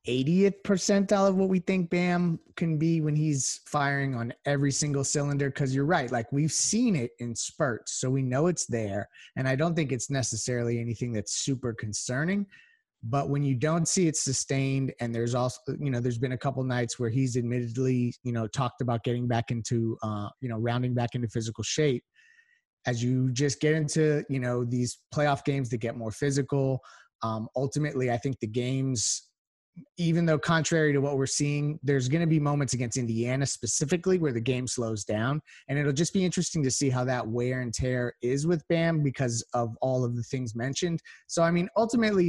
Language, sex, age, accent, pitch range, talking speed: English, male, 30-49, American, 120-155 Hz, 200 wpm